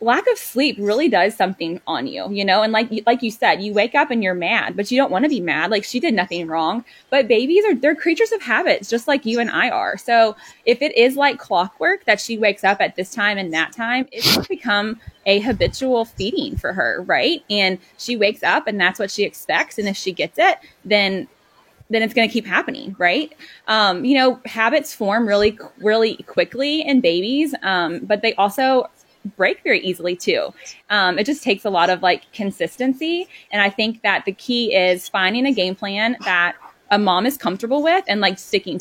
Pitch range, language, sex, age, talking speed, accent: 195-255 Hz, English, female, 20-39, 215 wpm, American